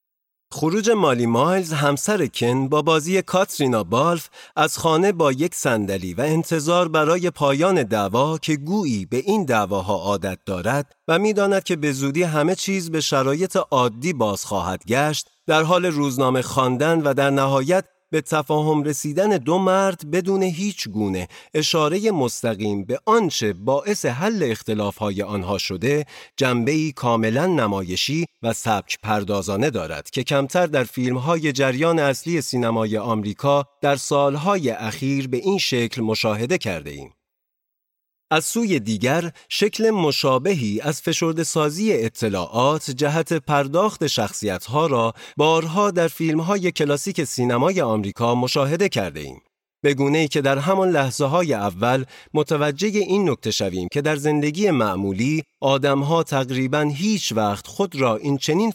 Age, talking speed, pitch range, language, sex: 40-59, 135 wpm, 115-170 Hz, Persian, male